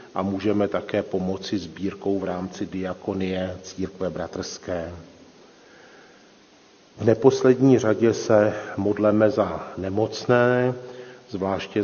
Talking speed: 90 wpm